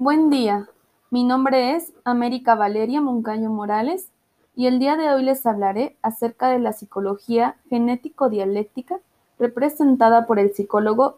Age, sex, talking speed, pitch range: 20-39, female, 135 wpm, 220-280 Hz